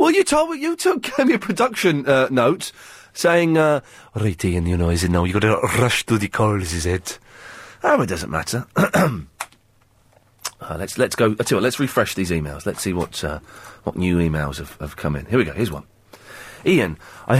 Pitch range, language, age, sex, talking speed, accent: 95-145 Hz, English, 30-49, male, 205 wpm, British